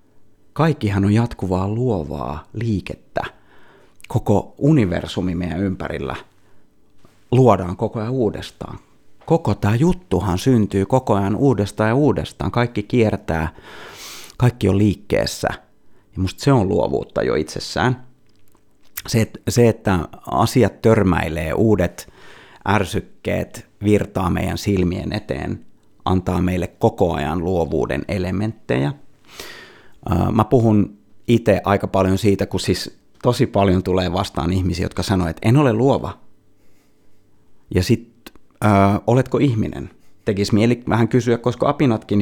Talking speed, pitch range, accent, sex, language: 110 wpm, 95-120 Hz, native, male, Finnish